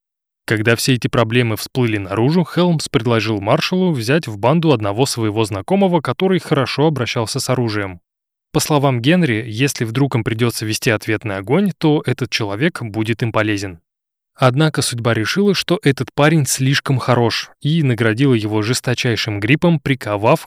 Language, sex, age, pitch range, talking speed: Russian, male, 20-39, 110-150 Hz, 145 wpm